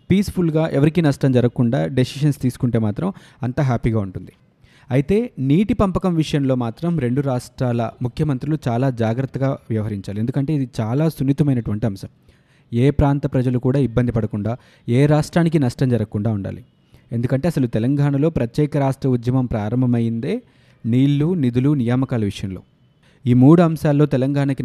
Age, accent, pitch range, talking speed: 20-39, native, 120-150 Hz, 125 wpm